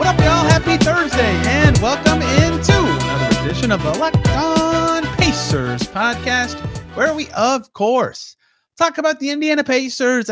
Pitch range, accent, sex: 150-240 Hz, American, male